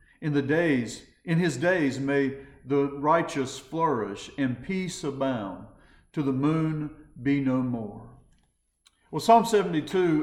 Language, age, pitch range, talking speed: English, 50-69, 130-170 Hz, 130 wpm